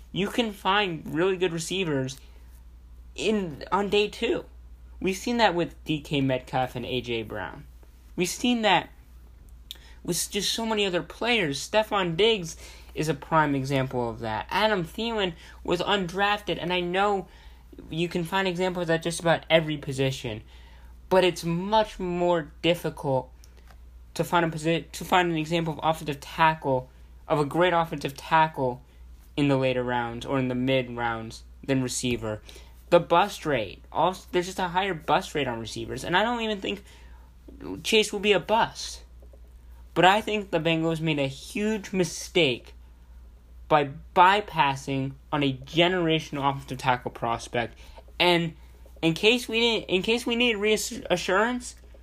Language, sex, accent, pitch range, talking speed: English, male, American, 115-180 Hz, 155 wpm